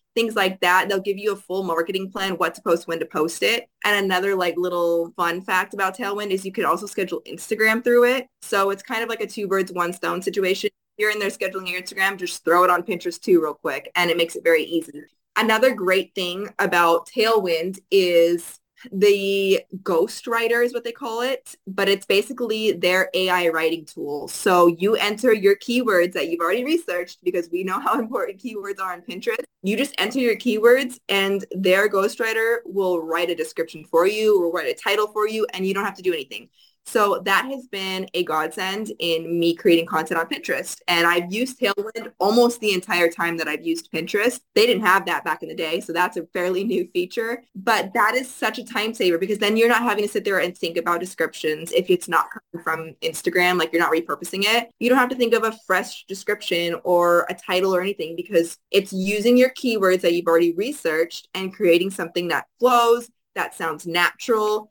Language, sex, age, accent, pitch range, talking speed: English, female, 20-39, American, 175-225 Hz, 210 wpm